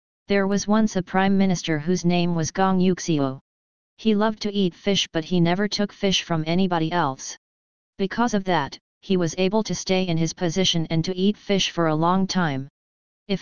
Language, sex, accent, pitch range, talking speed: English, female, American, 160-190 Hz, 195 wpm